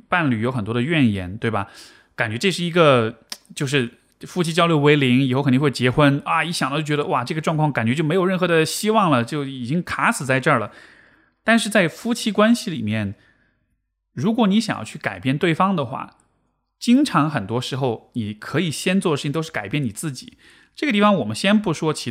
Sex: male